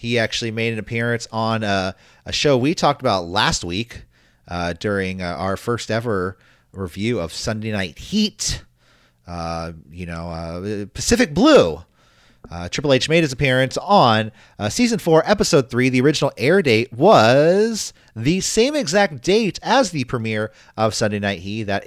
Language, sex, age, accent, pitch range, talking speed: English, male, 30-49, American, 100-140 Hz, 165 wpm